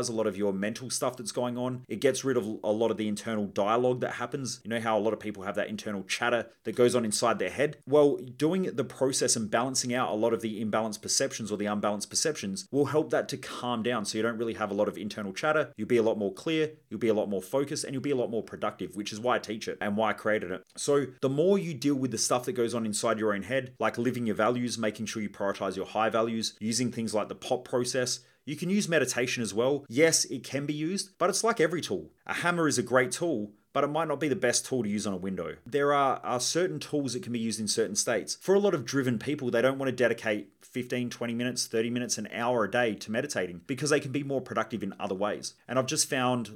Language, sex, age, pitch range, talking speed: English, male, 30-49, 110-135 Hz, 275 wpm